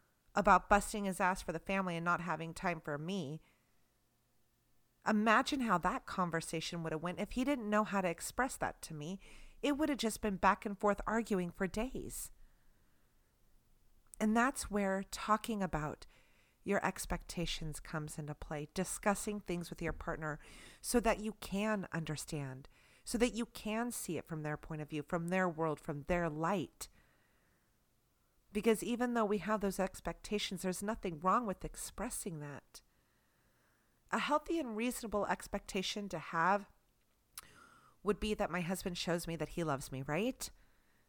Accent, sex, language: American, female, English